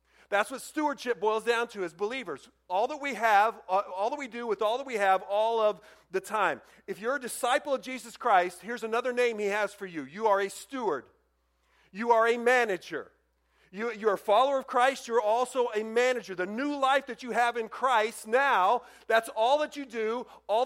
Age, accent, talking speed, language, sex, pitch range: 40-59, American, 210 wpm, English, male, 190-245 Hz